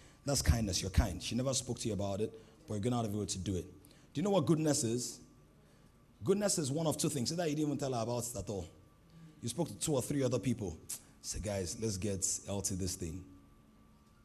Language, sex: English, male